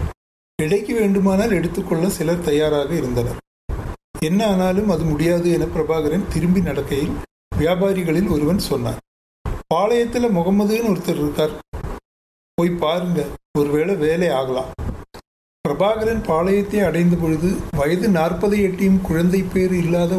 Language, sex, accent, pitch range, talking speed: Tamil, male, native, 155-190 Hz, 105 wpm